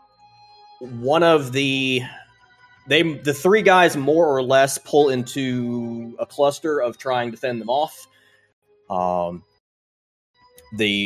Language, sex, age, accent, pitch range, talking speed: English, male, 30-49, American, 115-145 Hz, 120 wpm